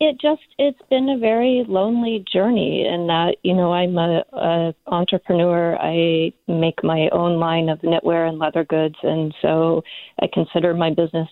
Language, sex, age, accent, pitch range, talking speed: English, female, 40-59, American, 160-185 Hz, 170 wpm